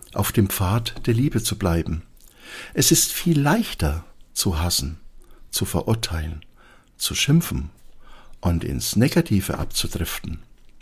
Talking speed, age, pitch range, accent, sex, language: 115 wpm, 60-79, 90-125 Hz, German, male, German